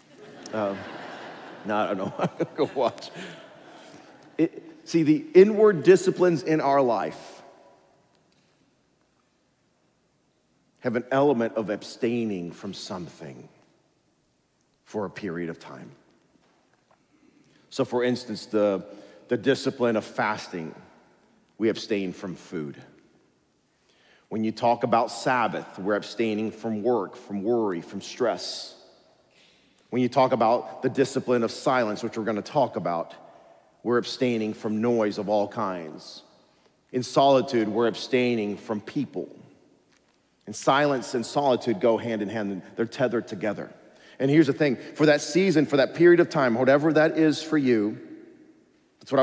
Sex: male